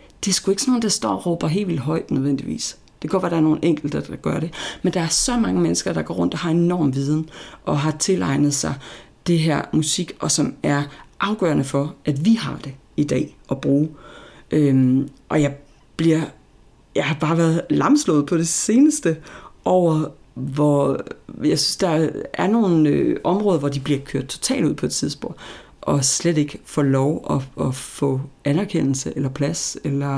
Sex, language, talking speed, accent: female, Danish, 195 wpm, native